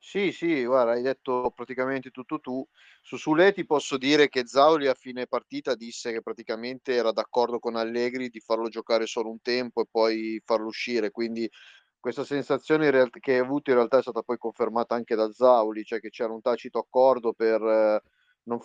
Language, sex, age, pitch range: Italian, male, 30-49, 115-135 Hz